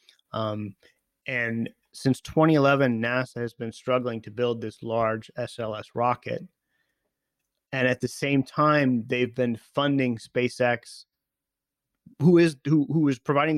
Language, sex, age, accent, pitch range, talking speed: English, male, 30-49, American, 115-140 Hz, 130 wpm